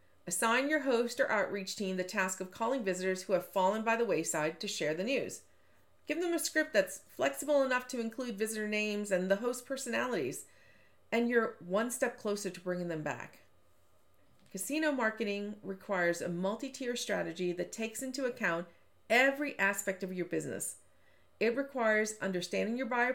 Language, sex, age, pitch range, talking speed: English, female, 40-59, 180-240 Hz, 170 wpm